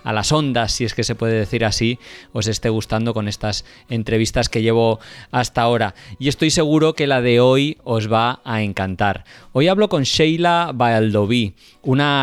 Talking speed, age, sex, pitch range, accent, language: 180 wpm, 20-39, male, 115-150 Hz, Spanish, Spanish